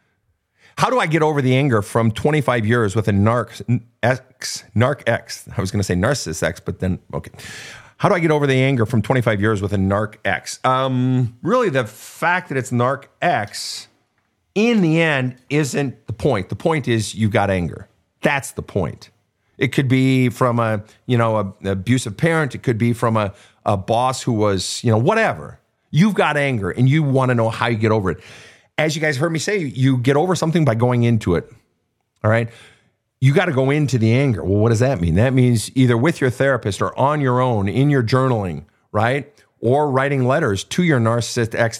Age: 40-59